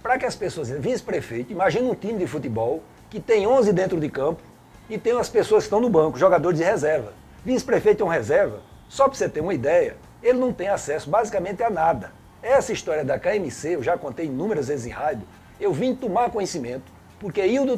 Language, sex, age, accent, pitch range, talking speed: Portuguese, male, 60-79, Brazilian, 150-235 Hz, 205 wpm